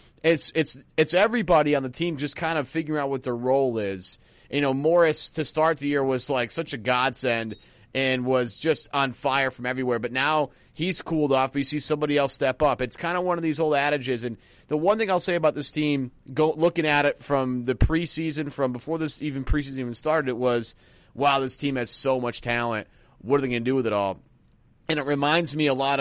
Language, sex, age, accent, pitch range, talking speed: English, male, 30-49, American, 120-150 Hz, 235 wpm